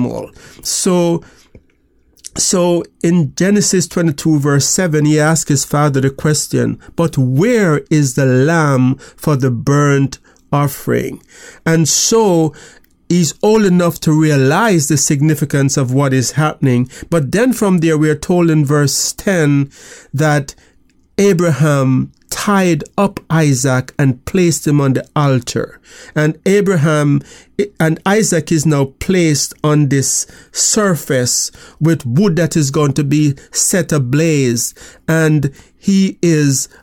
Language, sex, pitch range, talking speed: English, male, 145-175 Hz, 125 wpm